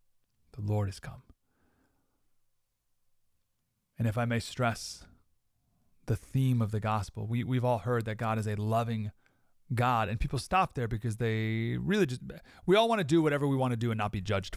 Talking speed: 185 wpm